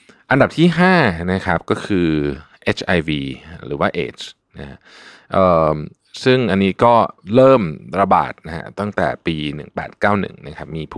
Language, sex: Thai, male